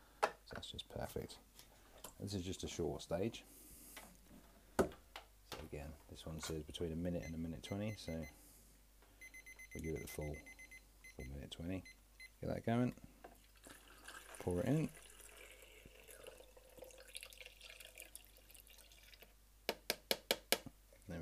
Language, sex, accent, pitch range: English, male, British, 80-105 Hz